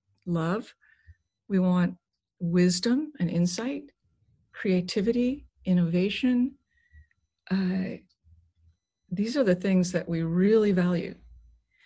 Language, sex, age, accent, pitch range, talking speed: English, female, 50-69, American, 180-225 Hz, 85 wpm